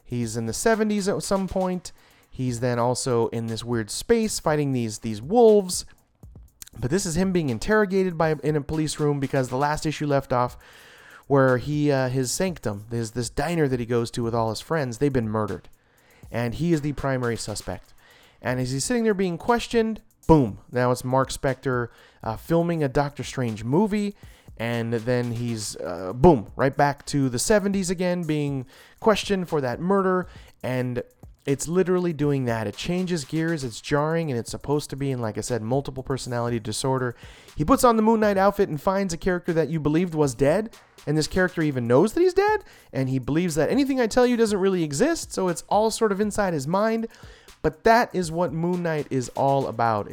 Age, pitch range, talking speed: 30-49, 125-185 Hz, 200 wpm